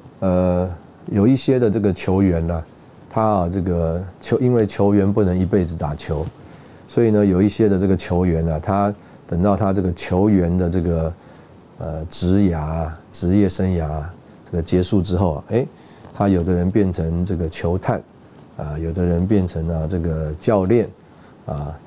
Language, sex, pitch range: Chinese, male, 85-100 Hz